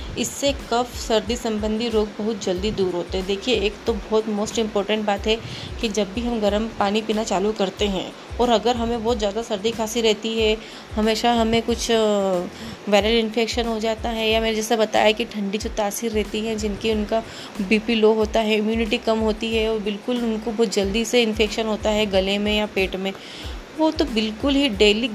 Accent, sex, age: native, female, 20-39